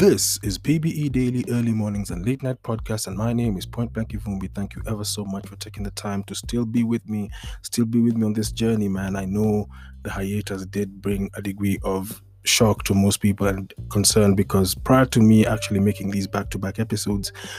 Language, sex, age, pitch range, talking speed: English, male, 20-39, 95-110 Hz, 210 wpm